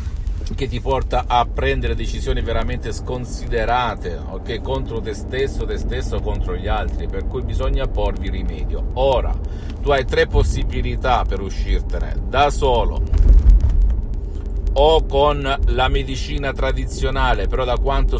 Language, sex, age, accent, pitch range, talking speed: Italian, male, 50-69, native, 85-130 Hz, 130 wpm